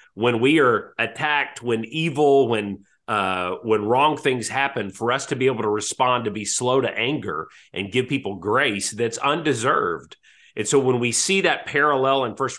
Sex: male